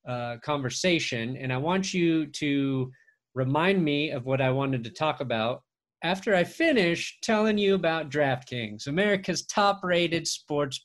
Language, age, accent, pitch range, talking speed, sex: English, 30-49, American, 145-200 Hz, 150 wpm, male